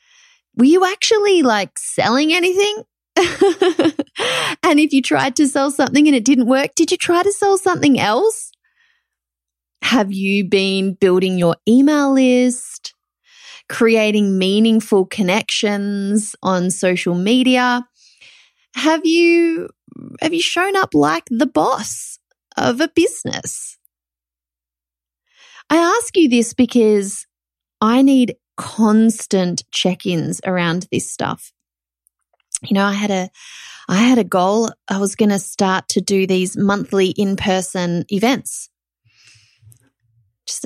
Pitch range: 190-320 Hz